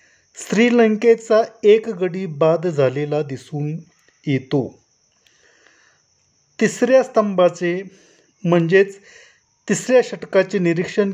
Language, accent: Marathi, native